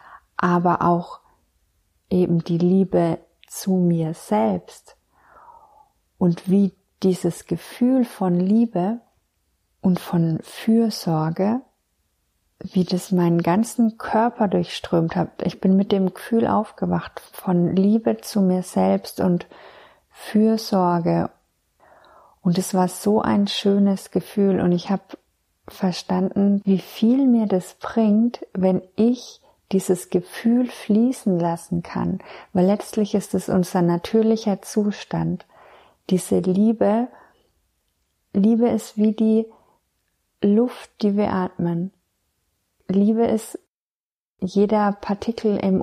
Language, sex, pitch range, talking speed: German, female, 180-215 Hz, 105 wpm